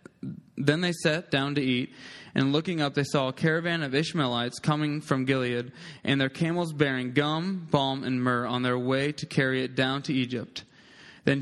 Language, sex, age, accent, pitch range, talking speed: English, male, 20-39, American, 130-155 Hz, 190 wpm